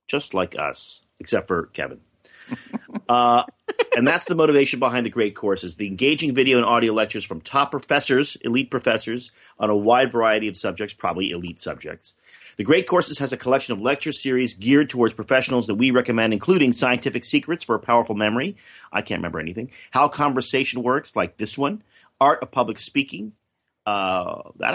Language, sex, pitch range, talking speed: English, male, 105-140 Hz, 175 wpm